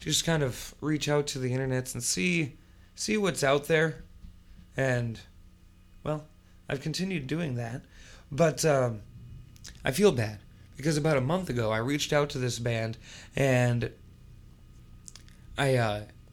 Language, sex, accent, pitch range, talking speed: English, male, American, 115-155 Hz, 145 wpm